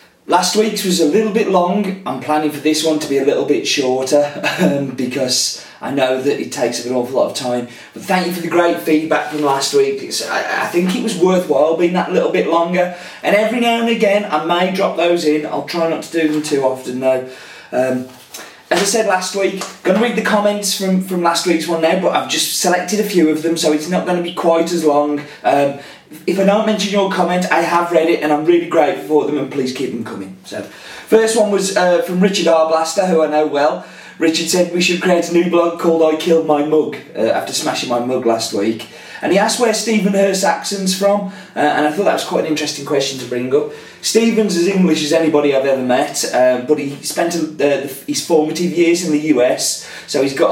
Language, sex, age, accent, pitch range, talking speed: English, male, 30-49, British, 145-185 Hz, 240 wpm